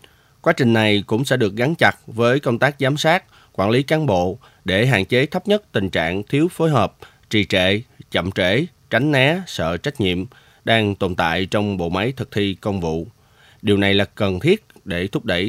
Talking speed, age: 210 wpm, 20-39